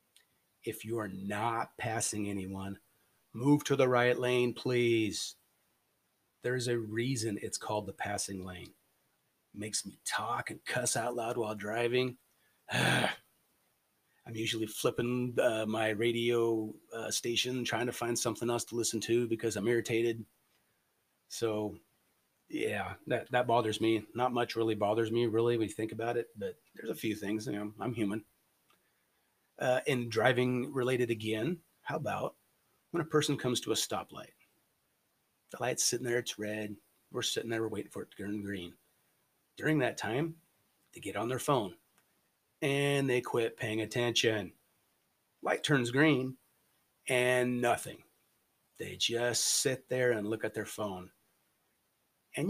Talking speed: 150 wpm